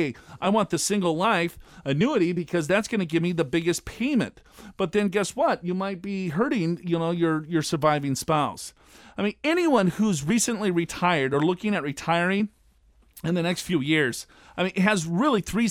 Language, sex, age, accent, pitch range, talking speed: English, male, 40-59, American, 165-210 Hz, 190 wpm